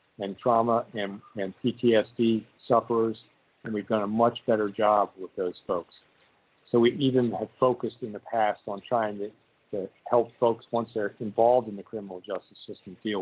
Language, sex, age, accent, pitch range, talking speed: English, male, 50-69, American, 110-130 Hz, 175 wpm